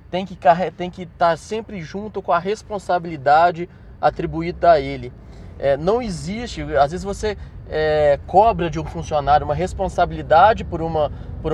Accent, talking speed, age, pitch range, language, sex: Brazilian, 150 wpm, 20-39, 155-230 Hz, Portuguese, male